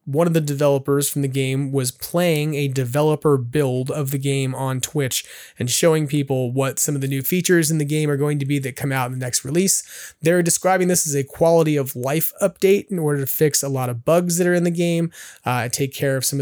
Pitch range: 135-170 Hz